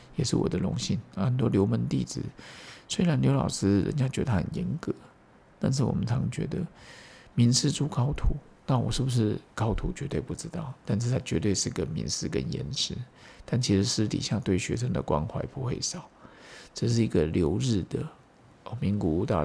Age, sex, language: 50-69, male, Chinese